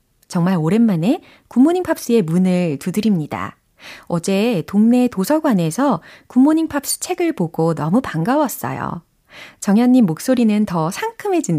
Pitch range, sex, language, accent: 160-230 Hz, female, Korean, native